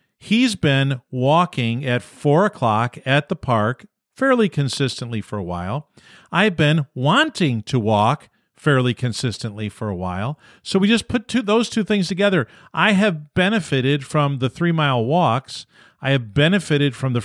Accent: American